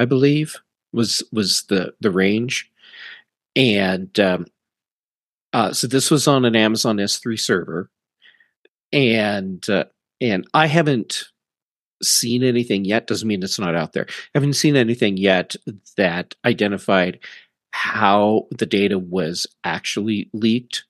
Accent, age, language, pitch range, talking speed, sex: American, 40-59, English, 100-125 Hz, 130 wpm, male